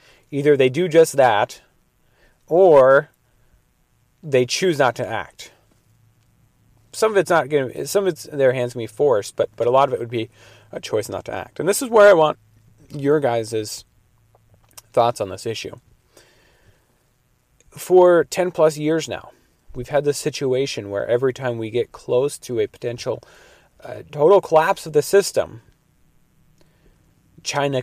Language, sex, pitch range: English, male, 110-155 Hz